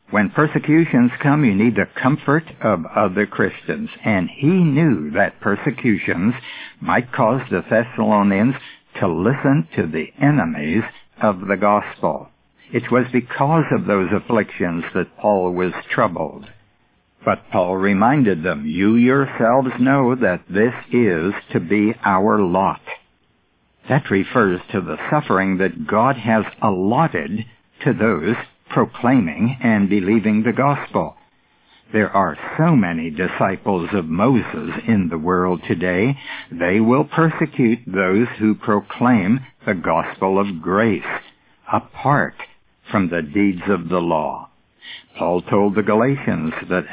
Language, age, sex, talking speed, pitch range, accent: English, 60-79, male, 130 wpm, 100-135 Hz, American